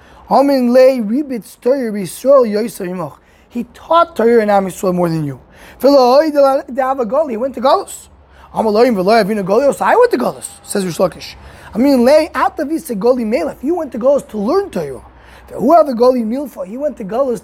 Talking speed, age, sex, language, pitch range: 95 wpm, 20-39, male, English, 220-295 Hz